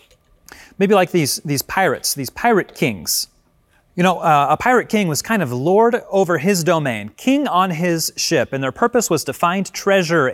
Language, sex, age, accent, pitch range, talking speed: English, male, 30-49, American, 135-200 Hz, 185 wpm